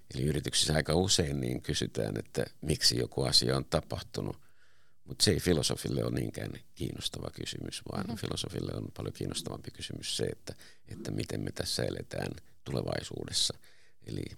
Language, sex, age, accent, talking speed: Finnish, male, 60-79, native, 145 wpm